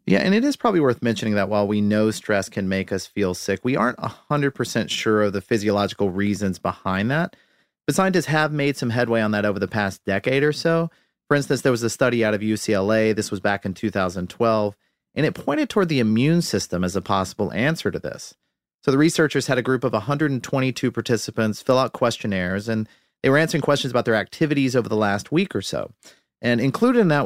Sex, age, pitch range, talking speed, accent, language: male, 40-59, 105-140 Hz, 215 wpm, American, English